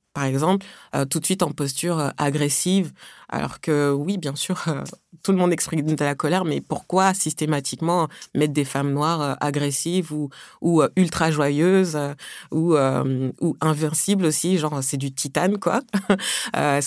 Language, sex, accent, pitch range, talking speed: French, female, French, 140-170 Hz, 180 wpm